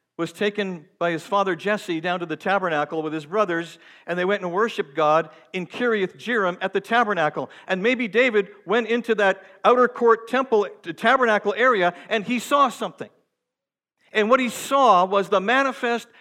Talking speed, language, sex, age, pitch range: 170 wpm, English, male, 50-69, 145-220 Hz